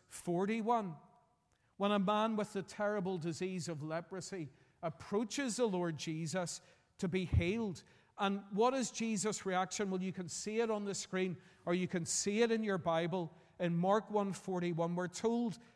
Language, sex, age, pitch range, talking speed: English, male, 50-69, 170-210 Hz, 165 wpm